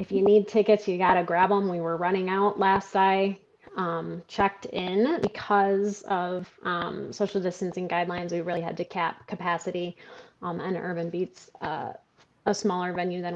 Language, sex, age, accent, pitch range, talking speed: English, female, 20-39, American, 180-225 Hz, 175 wpm